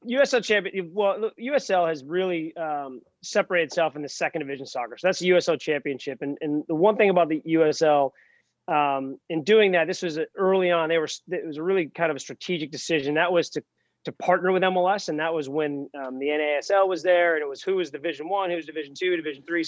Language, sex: English, male